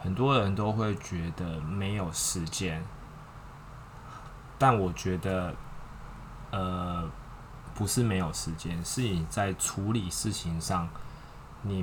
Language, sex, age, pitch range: Chinese, male, 20-39, 90-110 Hz